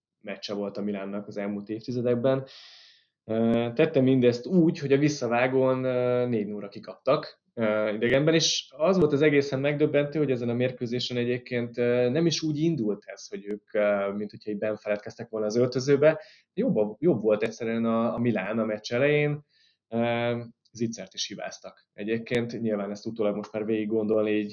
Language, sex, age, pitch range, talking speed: Hungarian, male, 20-39, 105-125 Hz, 150 wpm